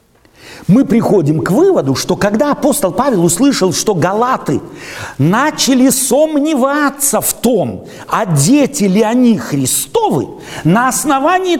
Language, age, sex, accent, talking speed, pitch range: Russian, 50-69, male, native, 115 wpm, 160-270 Hz